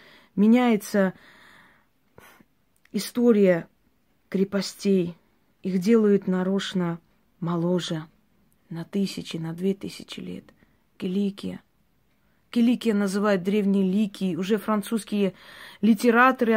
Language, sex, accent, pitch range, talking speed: Russian, female, native, 185-220 Hz, 75 wpm